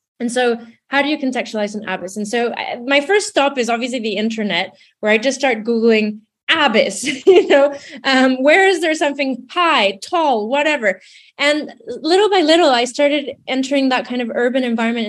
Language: English